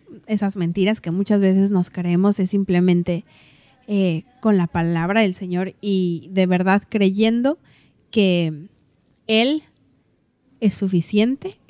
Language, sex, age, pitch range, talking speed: Spanish, female, 20-39, 190-230 Hz, 120 wpm